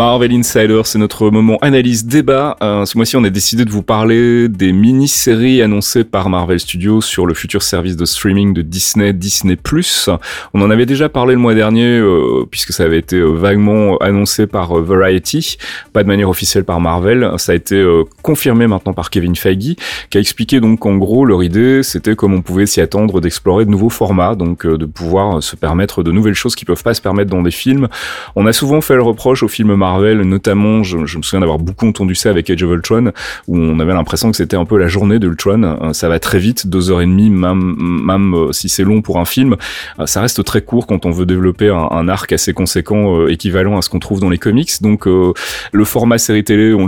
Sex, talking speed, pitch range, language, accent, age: male, 235 wpm, 90-110 Hz, French, French, 30-49